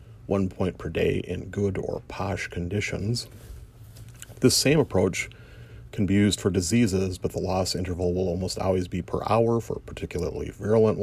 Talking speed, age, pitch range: 170 wpm, 40-59, 90-115 Hz